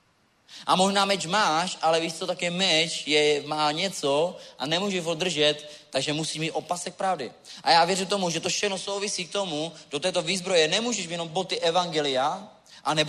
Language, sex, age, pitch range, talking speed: Czech, male, 30-49, 150-185 Hz, 190 wpm